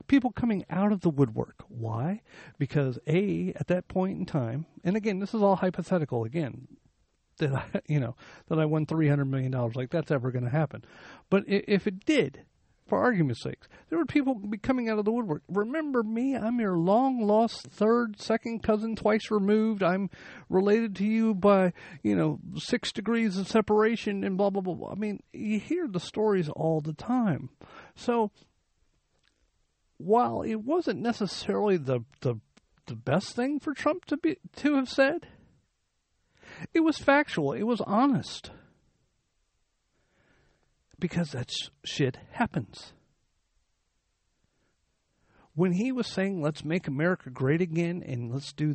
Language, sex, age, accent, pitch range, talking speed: English, male, 50-69, American, 140-215 Hz, 155 wpm